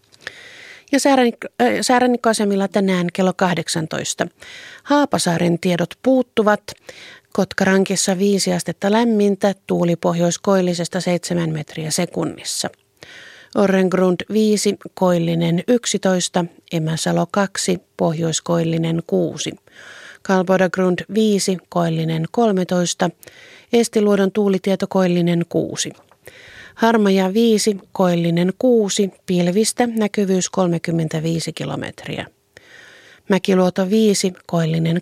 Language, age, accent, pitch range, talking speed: Finnish, 30-49, native, 170-205 Hz, 75 wpm